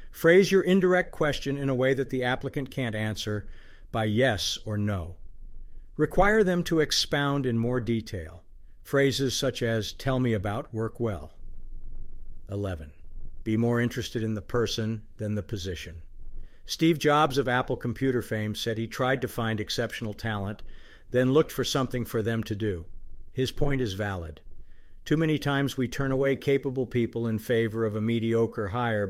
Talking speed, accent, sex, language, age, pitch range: 165 wpm, American, male, English, 50-69, 105-135 Hz